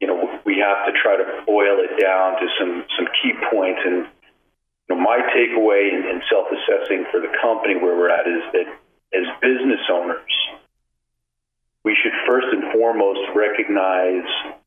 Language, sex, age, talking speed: English, male, 40-59, 170 wpm